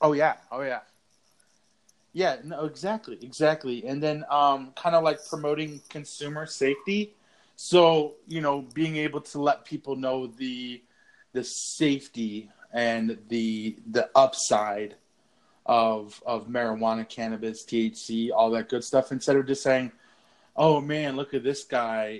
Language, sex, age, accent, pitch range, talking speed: English, male, 20-39, American, 115-150 Hz, 140 wpm